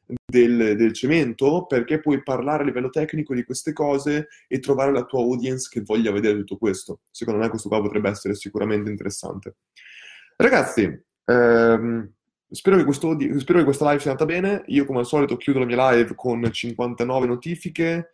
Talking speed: 175 wpm